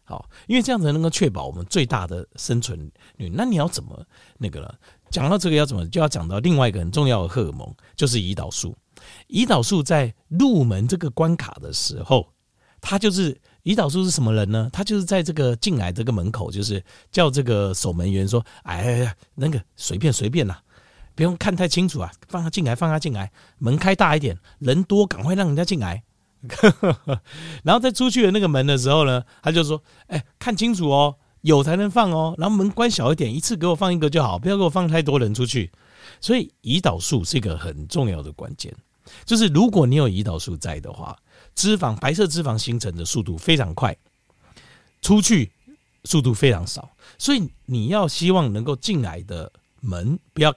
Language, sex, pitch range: Chinese, male, 110-180 Hz